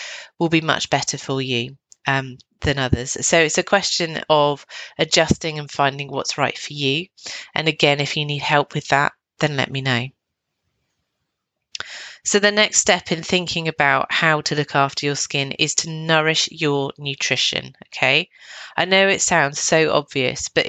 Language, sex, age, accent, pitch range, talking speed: English, female, 30-49, British, 145-175 Hz, 170 wpm